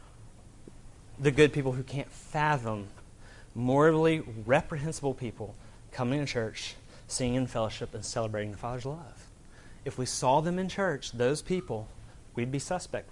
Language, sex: English, male